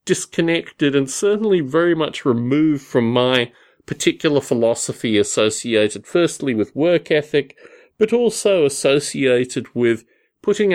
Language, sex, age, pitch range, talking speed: English, male, 40-59, 115-170 Hz, 110 wpm